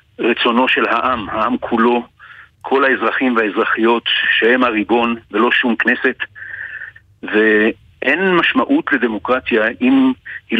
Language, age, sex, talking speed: Hebrew, 60-79, male, 100 wpm